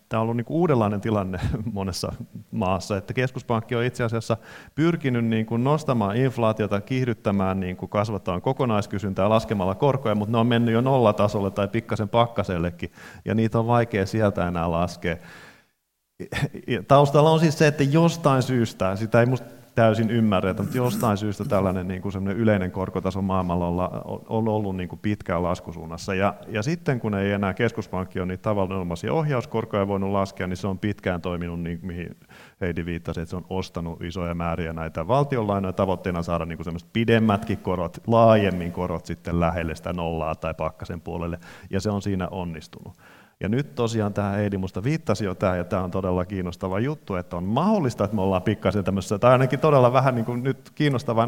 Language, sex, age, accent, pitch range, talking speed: Finnish, male, 30-49, native, 90-115 Hz, 165 wpm